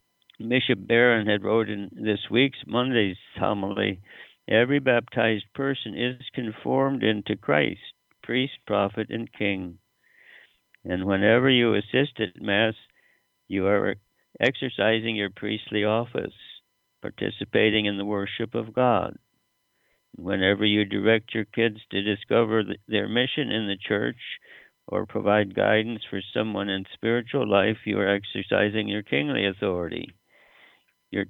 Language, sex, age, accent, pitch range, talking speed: English, male, 60-79, American, 100-115 Hz, 125 wpm